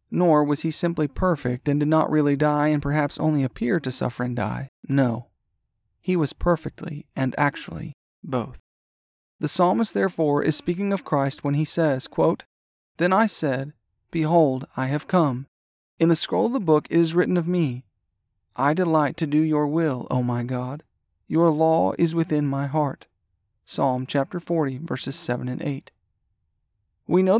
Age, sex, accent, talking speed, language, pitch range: 40-59, male, American, 170 wpm, English, 130-175 Hz